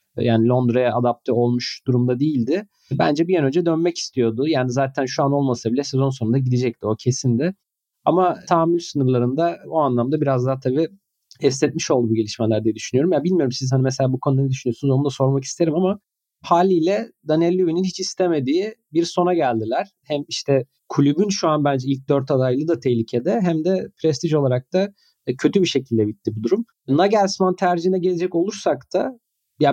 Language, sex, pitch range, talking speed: Turkish, male, 125-175 Hz, 180 wpm